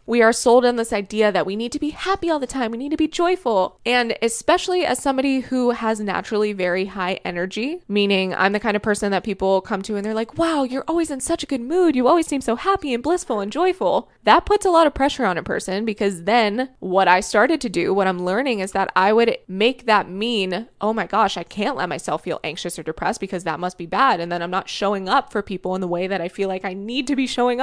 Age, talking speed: 20-39, 265 wpm